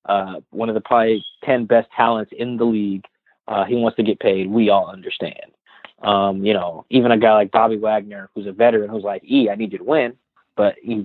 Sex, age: male, 20-39